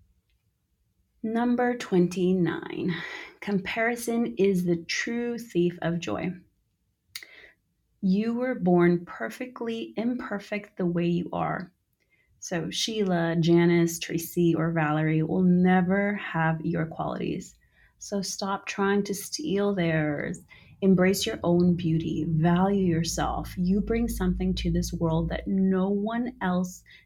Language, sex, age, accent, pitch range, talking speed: English, female, 30-49, American, 165-200 Hz, 115 wpm